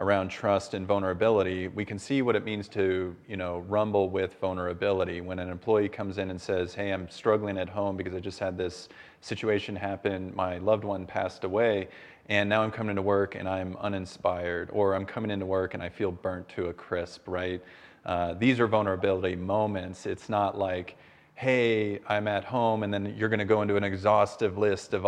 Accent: American